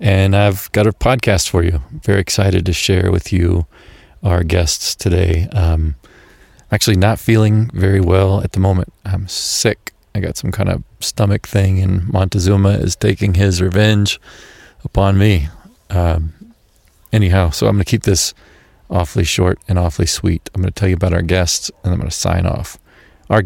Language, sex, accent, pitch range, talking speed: English, male, American, 90-105 Hz, 180 wpm